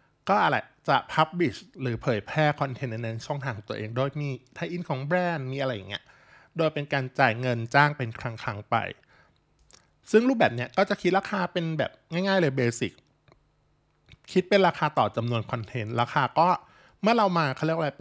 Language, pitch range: Thai, 120-155 Hz